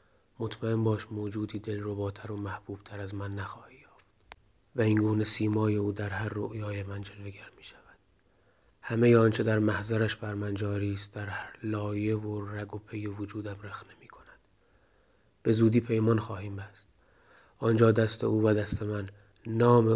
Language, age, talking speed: Persian, 30-49, 160 wpm